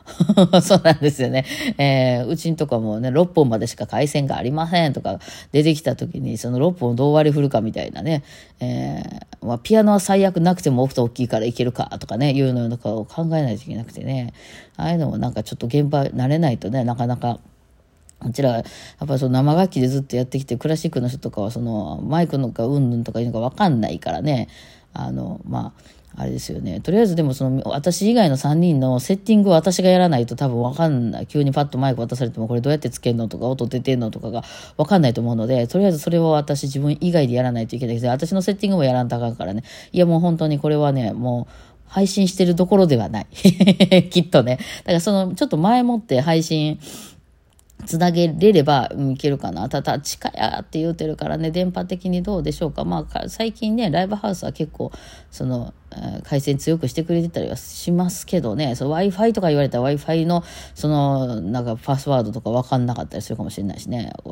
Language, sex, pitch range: Japanese, female, 120-165 Hz